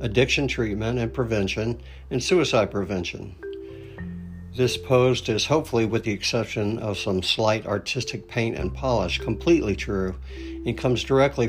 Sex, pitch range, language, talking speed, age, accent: male, 95-125 Hz, English, 135 wpm, 60-79, American